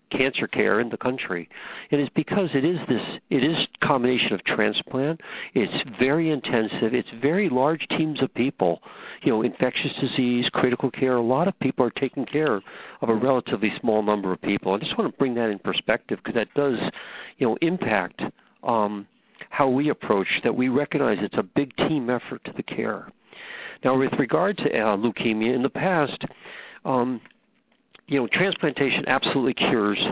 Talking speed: 175 wpm